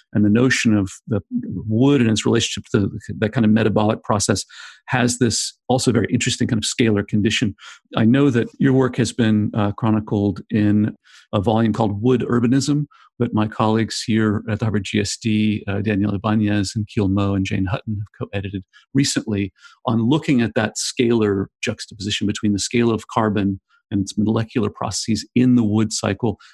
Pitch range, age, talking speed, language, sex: 105-120 Hz, 40-59, 180 wpm, English, male